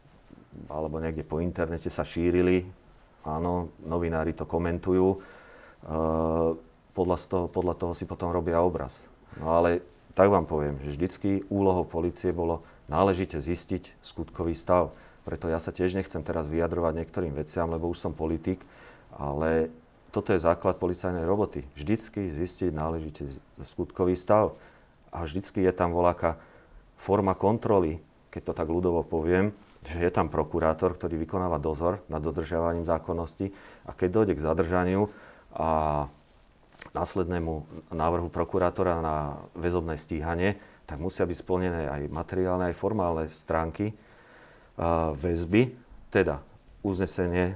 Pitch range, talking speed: 80-95 Hz, 130 wpm